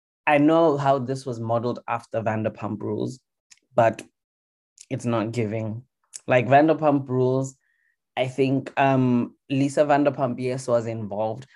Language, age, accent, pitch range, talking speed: English, 20-39, South African, 115-135 Hz, 125 wpm